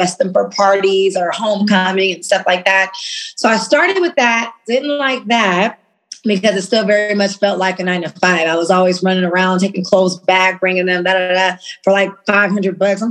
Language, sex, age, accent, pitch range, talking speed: English, female, 20-39, American, 180-220 Hz, 195 wpm